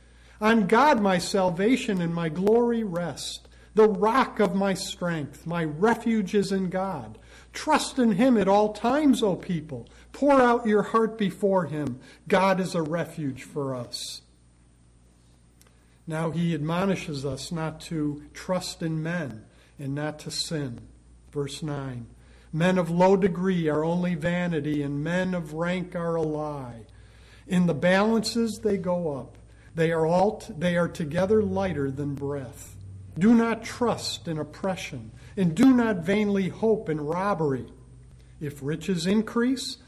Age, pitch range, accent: 50-69, 135-195 Hz, American